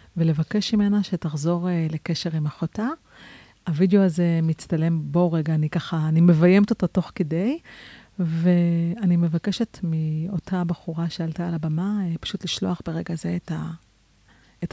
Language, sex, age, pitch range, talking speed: Hebrew, female, 40-59, 165-185 Hz, 120 wpm